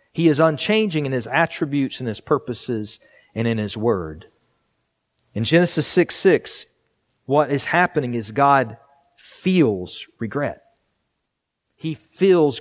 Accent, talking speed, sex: American, 125 wpm, male